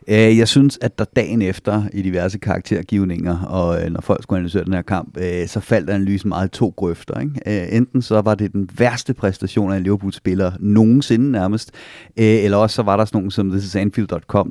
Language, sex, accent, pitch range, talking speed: Danish, male, native, 90-110 Hz, 190 wpm